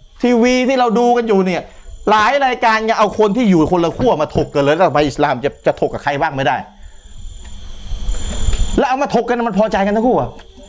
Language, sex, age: Thai, male, 30-49